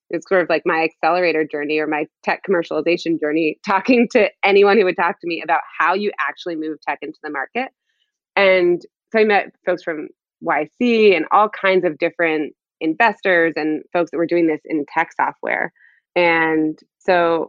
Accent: American